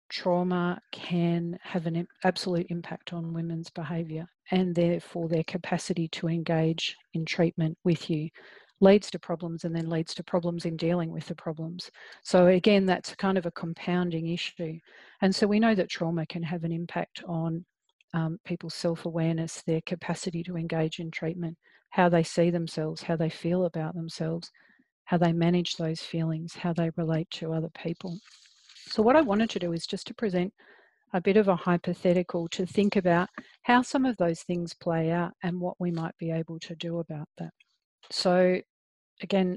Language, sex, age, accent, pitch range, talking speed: English, female, 40-59, Australian, 165-185 Hz, 175 wpm